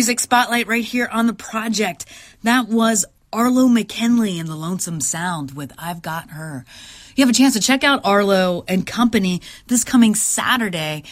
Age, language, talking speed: 30-49, English, 165 wpm